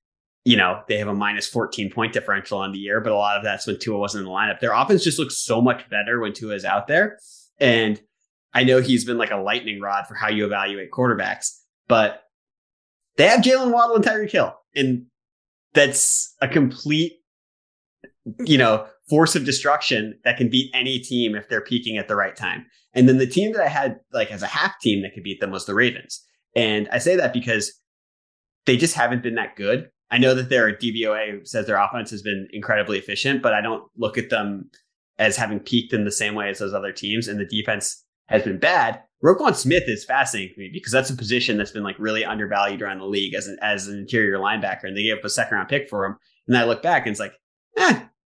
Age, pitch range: 20-39, 105-130 Hz